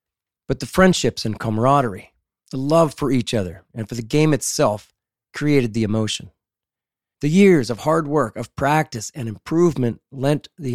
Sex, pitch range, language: male, 110-145 Hz, English